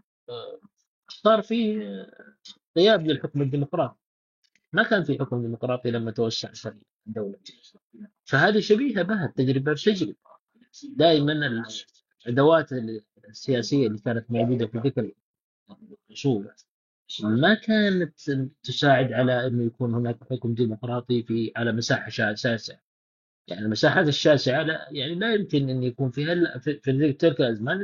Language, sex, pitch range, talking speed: Arabic, male, 115-155 Hz, 115 wpm